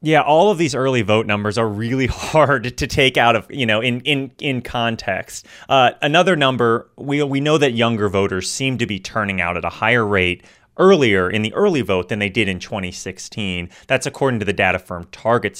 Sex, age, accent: male, 30-49, American